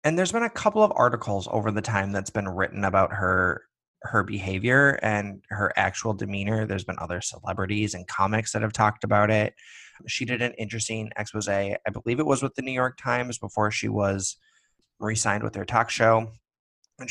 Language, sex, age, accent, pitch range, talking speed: English, male, 20-39, American, 105-130 Hz, 195 wpm